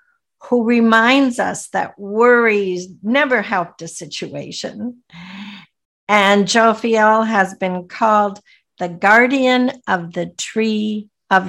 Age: 60-79